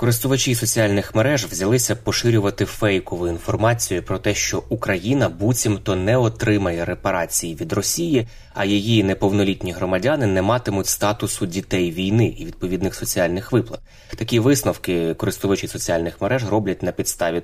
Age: 20-39